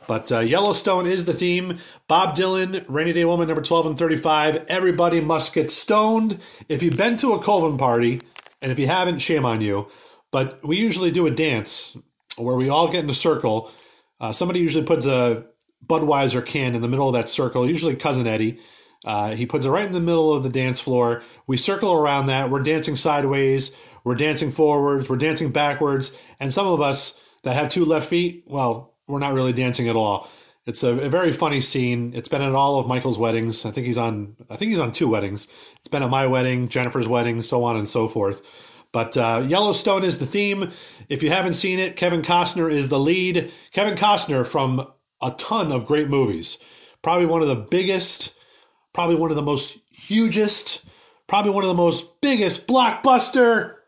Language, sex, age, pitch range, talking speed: English, male, 30-49, 125-175 Hz, 200 wpm